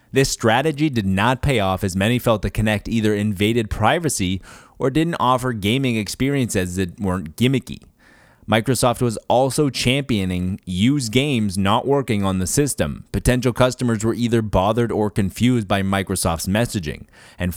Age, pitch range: 30-49, 100-125 Hz